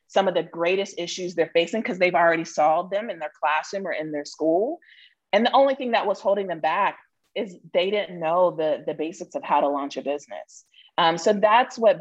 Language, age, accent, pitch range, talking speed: English, 30-49, American, 150-180 Hz, 225 wpm